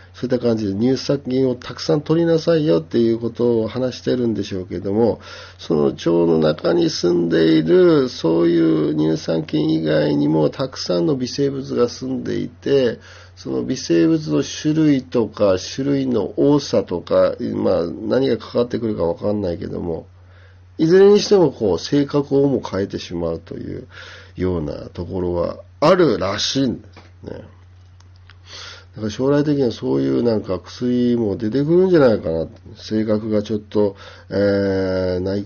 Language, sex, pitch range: Japanese, male, 90-125 Hz